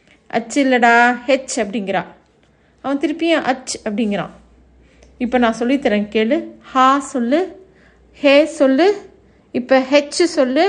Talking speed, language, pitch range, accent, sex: 105 wpm, Tamil, 240-300 Hz, native, female